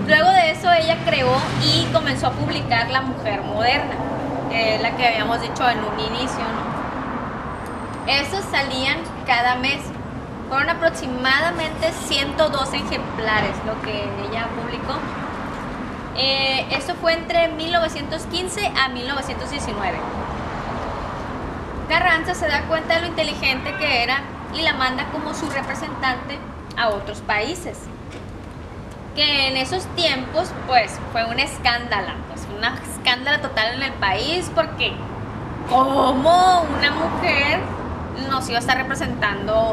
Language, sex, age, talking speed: Spanish, female, 20-39, 125 wpm